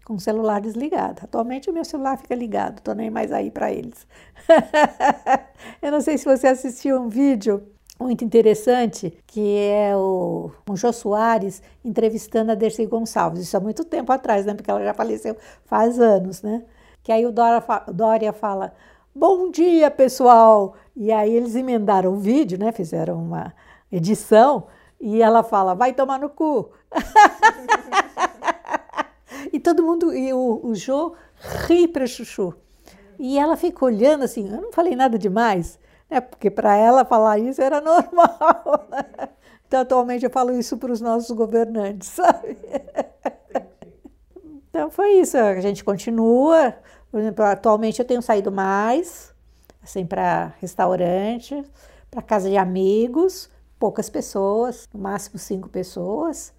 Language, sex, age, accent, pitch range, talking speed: Portuguese, female, 60-79, Brazilian, 210-280 Hz, 150 wpm